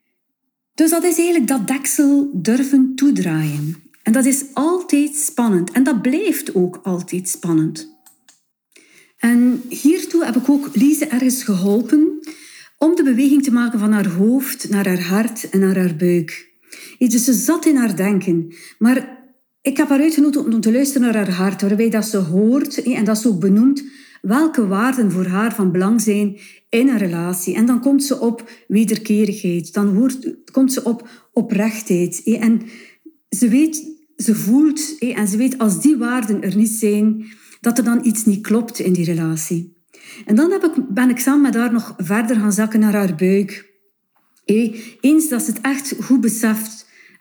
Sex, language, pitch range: female, Dutch, 200-270 Hz